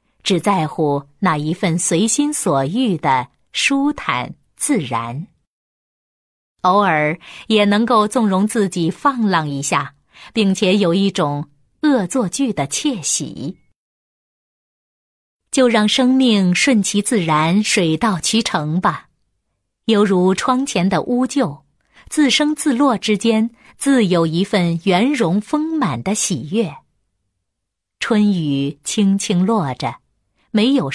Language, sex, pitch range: Chinese, female, 150-225 Hz